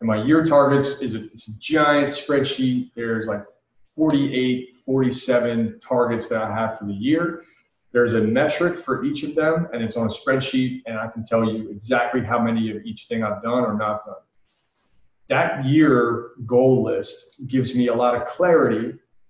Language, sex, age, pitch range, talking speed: English, male, 30-49, 115-140 Hz, 180 wpm